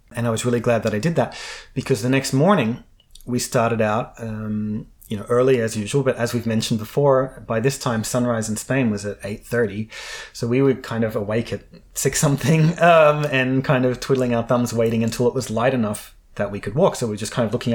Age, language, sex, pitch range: 30-49, English, male, 110-130 Hz